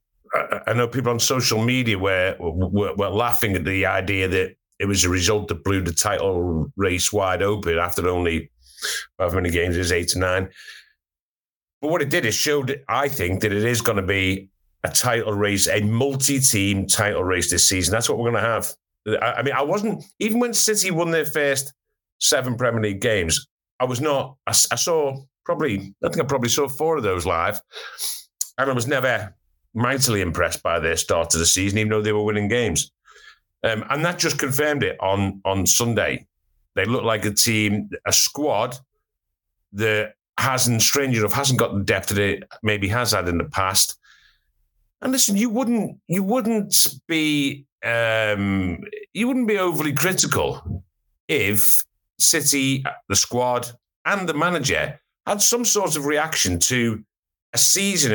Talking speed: 180 wpm